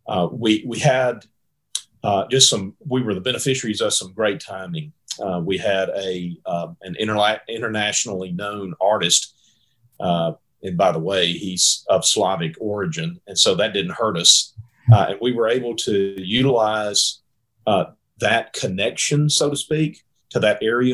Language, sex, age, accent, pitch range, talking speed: English, male, 40-59, American, 100-125 Hz, 160 wpm